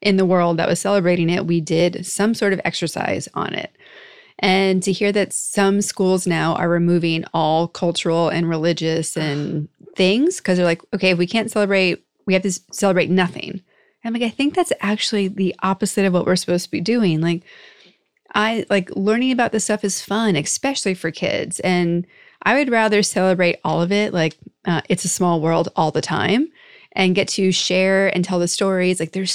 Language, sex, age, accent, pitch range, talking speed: English, female, 30-49, American, 175-205 Hz, 195 wpm